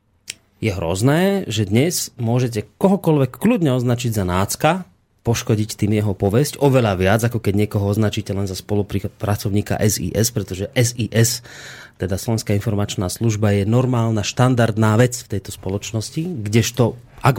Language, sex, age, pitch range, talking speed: Slovak, male, 30-49, 105-130 Hz, 135 wpm